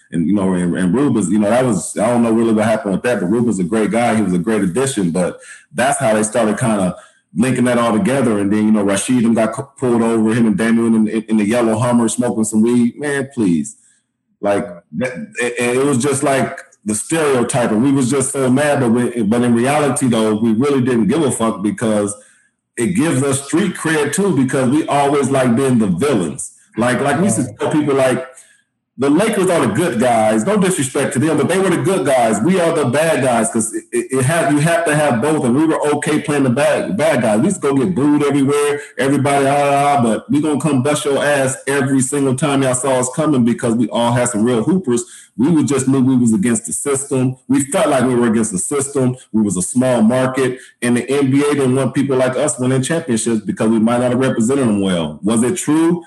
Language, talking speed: English, 245 wpm